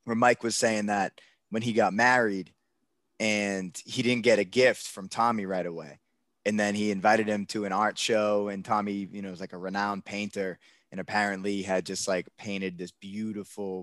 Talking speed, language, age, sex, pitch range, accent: 195 wpm, English, 20-39, male, 95-115 Hz, American